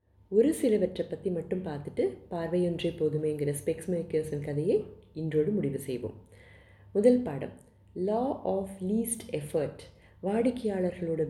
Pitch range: 145-195 Hz